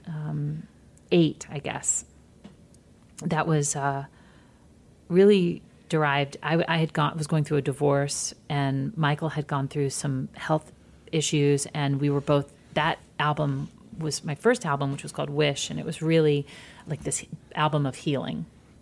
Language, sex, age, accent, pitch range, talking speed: English, female, 40-59, American, 145-170 Hz, 155 wpm